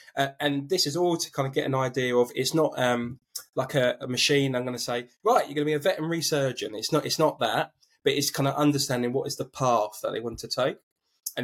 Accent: British